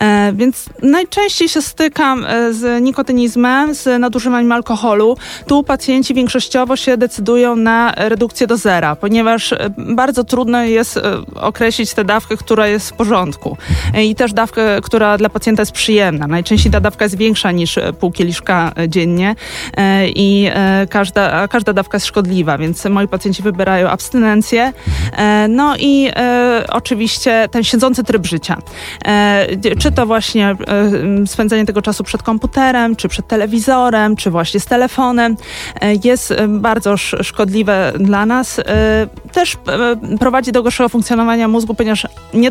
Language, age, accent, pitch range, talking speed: Polish, 20-39, native, 200-240 Hz, 135 wpm